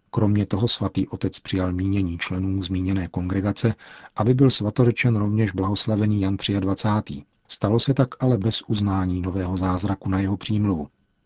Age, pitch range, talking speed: 40-59, 95-110 Hz, 145 wpm